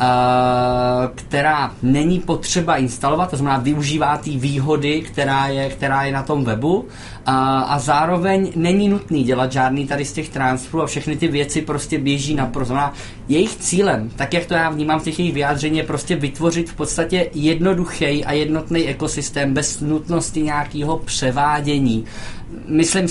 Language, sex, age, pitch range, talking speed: Czech, male, 20-39, 135-155 Hz, 155 wpm